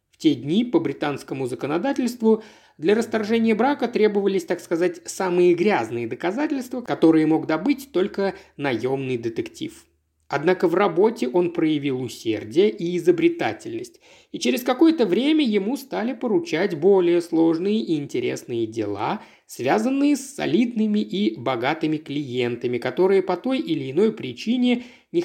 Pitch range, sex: 155-245 Hz, male